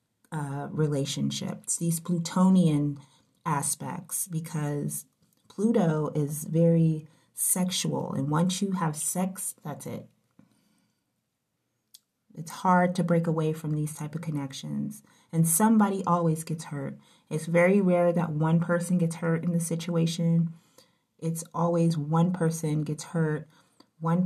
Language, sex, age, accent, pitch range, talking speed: English, female, 30-49, American, 150-170 Hz, 125 wpm